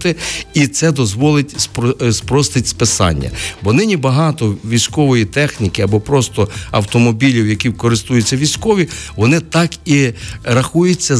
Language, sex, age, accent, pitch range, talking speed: Ukrainian, male, 50-69, native, 105-140 Hz, 105 wpm